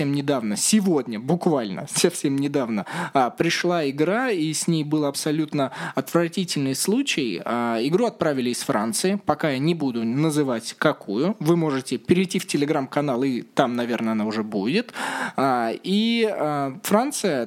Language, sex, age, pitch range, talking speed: Russian, male, 20-39, 140-190 Hz, 140 wpm